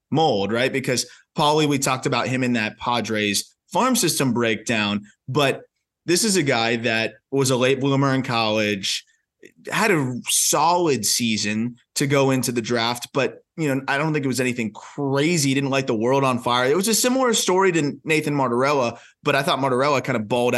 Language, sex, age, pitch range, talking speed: English, male, 20-39, 120-145 Hz, 190 wpm